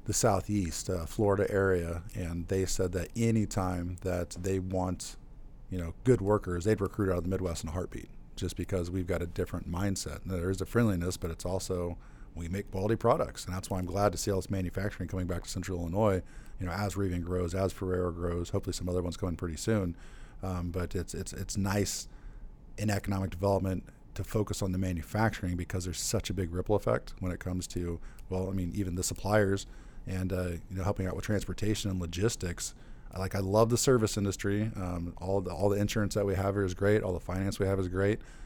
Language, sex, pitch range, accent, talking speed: English, male, 90-100 Hz, American, 225 wpm